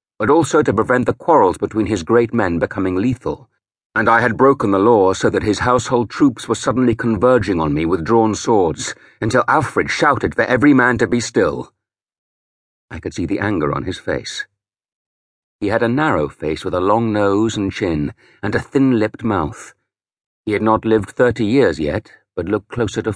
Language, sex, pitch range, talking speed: English, male, 95-125 Hz, 195 wpm